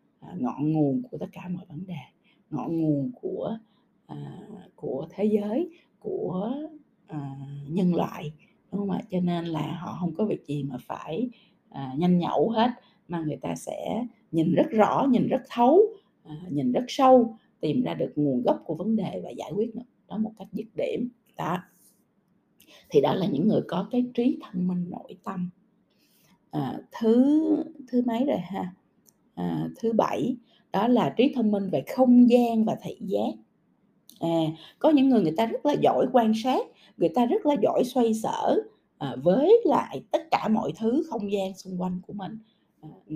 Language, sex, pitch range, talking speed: Vietnamese, female, 170-245 Hz, 180 wpm